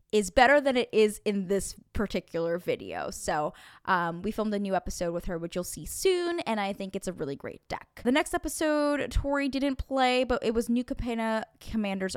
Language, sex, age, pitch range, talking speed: English, female, 10-29, 185-240 Hz, 205 wpm